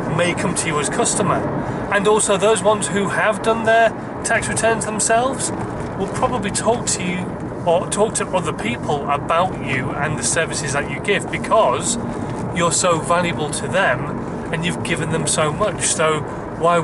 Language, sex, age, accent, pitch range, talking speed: English, male, 30-49, British, 165-215 Hz, 175 wpm